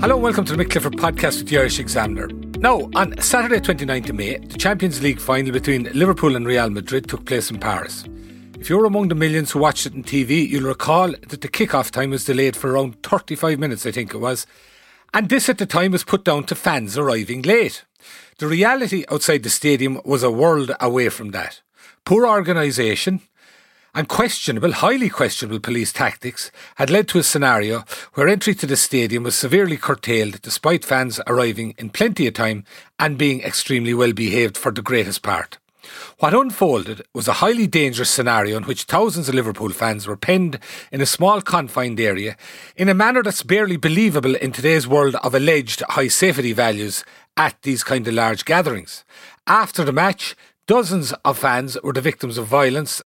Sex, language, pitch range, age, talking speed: male, English, 120-175 Hz, 40-59, 190 wpm